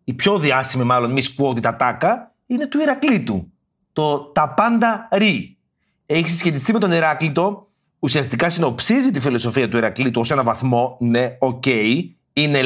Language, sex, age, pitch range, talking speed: Greek, male, 30-49, 125-195 Hz, 145 wpm